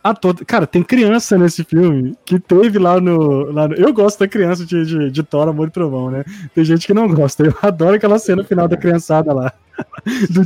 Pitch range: 135-195 Hz